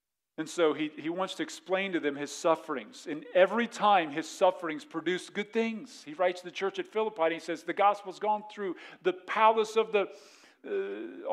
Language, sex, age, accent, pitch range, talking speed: English, male, 50-69, American, 145-185 Hz, 200 wpm